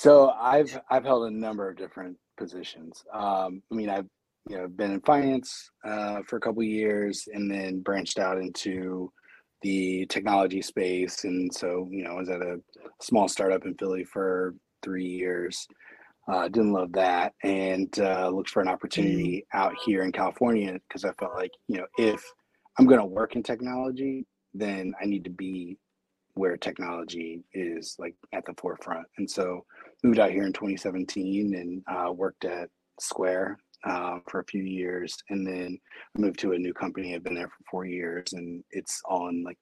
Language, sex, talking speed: English, male, 180 wpm